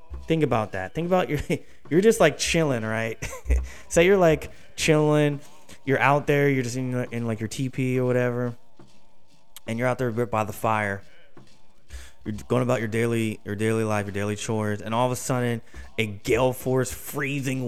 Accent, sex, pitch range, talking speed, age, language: American, male, 115-150 Hz, 185 wpm, 20-39, English